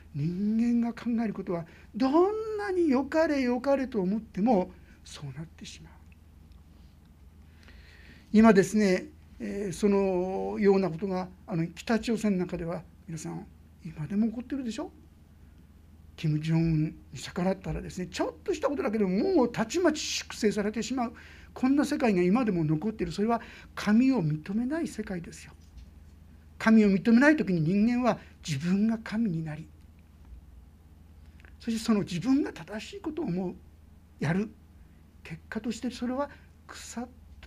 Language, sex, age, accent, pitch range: Japanese, male, 60-79, native, 155-245 Hz